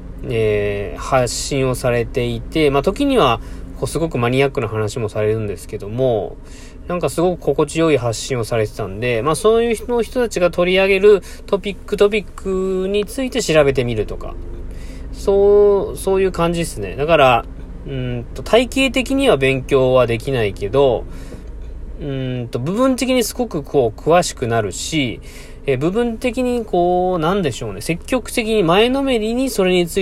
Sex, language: male, Japanese